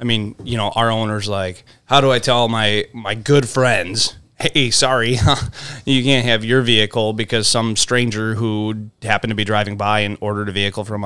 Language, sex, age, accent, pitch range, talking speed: English, male, 20-39, American, 105-125 Hz, 195 wpm